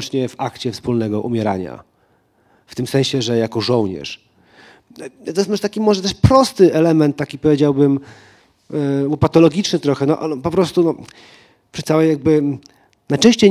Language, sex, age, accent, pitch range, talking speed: Polish, male, 40-59, native, 110-145 Hz, 120 wpm